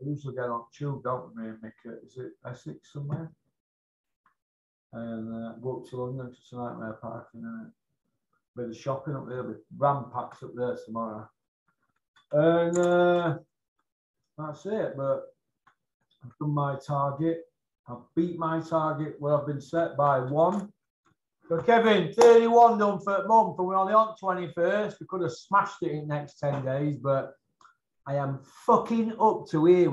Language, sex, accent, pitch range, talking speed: English, male, British, 125-185 Hz, 170 wpm